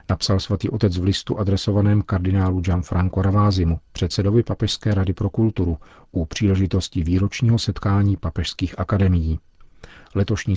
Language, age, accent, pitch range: Czech, 40-59, native, 90-105 Hz